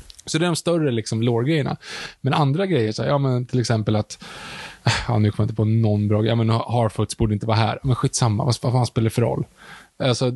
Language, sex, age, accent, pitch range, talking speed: Swedish, male, 20-39, Norwegian, 120-150 Hz, 230 wpm